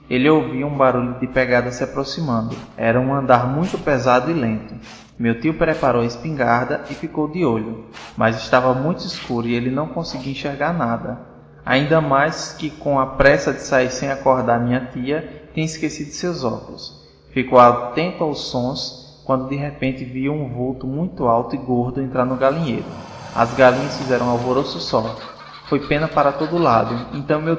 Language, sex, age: Portuguese, male, 20-39